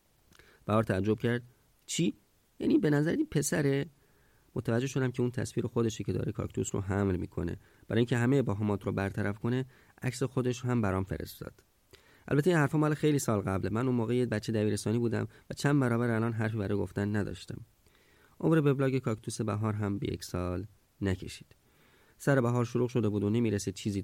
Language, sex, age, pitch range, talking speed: Persian, male, 30-49, 95-120 Hz, 180 wpm